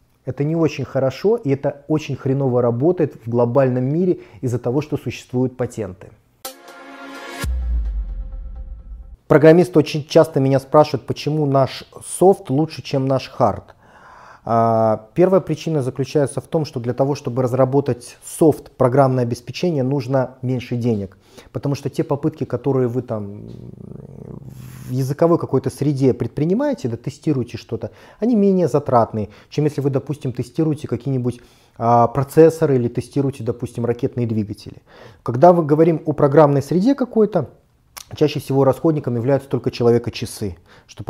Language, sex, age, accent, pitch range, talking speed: Russian, male, 30-49, native, 120-155 Hz, 130 wpm